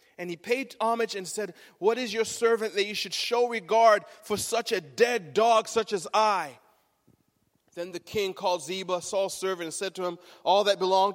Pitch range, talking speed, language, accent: 170-220 Hz, 200 wpm, English, American